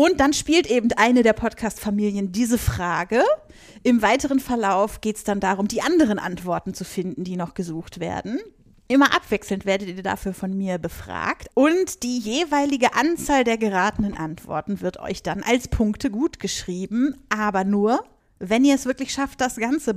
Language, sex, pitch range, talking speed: German, female, 195-255 Hz, 170 wpm